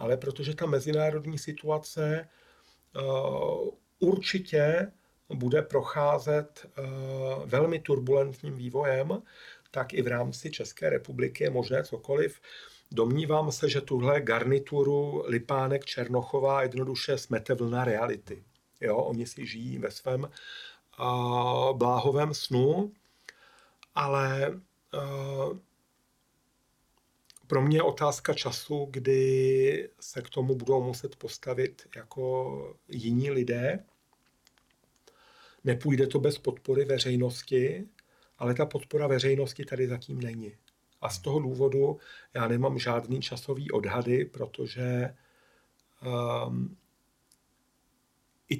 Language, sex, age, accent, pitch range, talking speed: Czech, male, 50-69, native, 125-145 Hz, 95 wpm